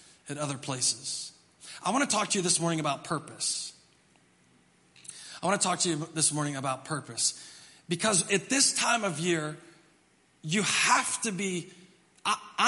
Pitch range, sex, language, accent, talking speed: 155-205 Hz, male, English, American, 160 wpm